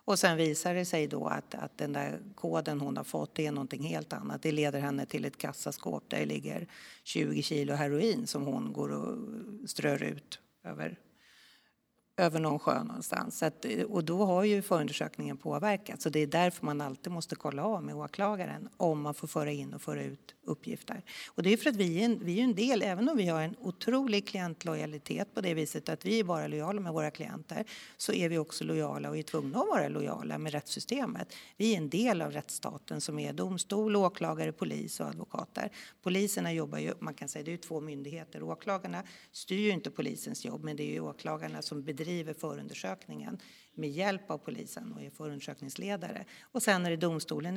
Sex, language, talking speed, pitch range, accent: female, Swedish, 200 wpm, 150-205 Hz, native